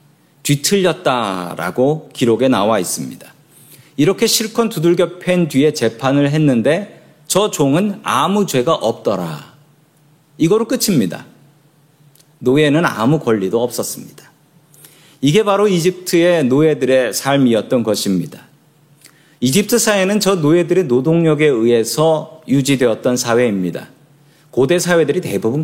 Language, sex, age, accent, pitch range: Korean, male, 40-59, native, 135-180 Hz